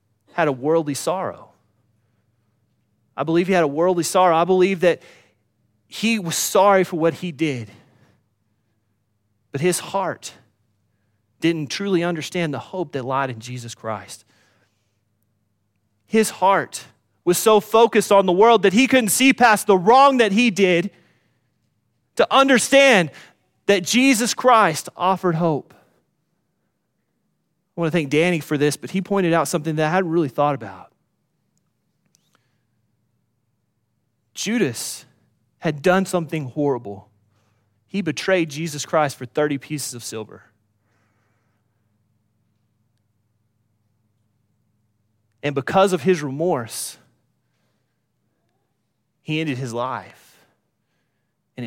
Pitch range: 110-175 Hz